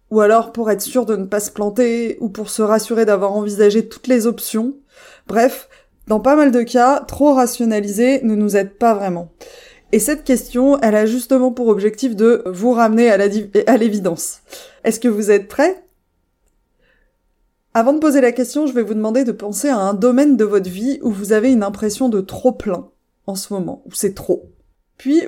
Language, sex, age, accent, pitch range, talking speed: French, female, 20-39, French, 200-255 Hz, 200 wpm